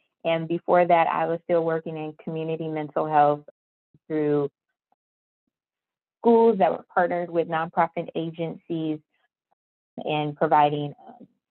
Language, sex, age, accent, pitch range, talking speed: English, female, 20-39, American, 155-190 Hz, 110 wpm